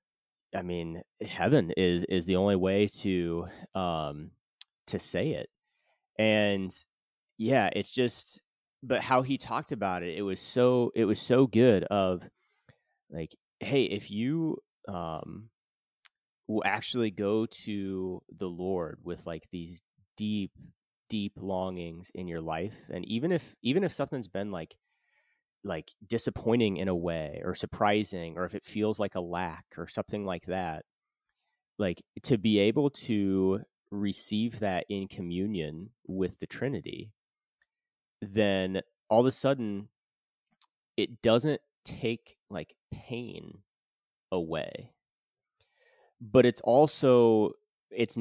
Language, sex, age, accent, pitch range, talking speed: English, male, 30-49, American, 95-115 Hz, 130 wpm